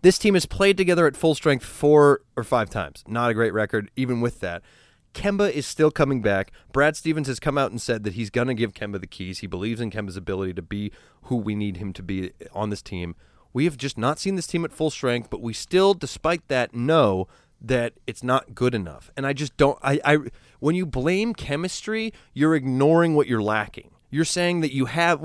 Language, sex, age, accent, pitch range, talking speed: English, male, 30-49, American, 110-160 Hz, 225 wpm